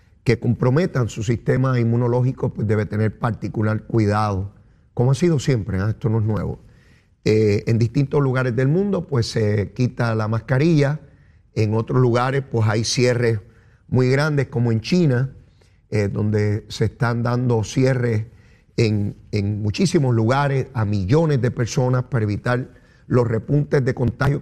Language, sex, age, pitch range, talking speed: Spanish, male, 40-59, 110-135 Hz, 145 wpm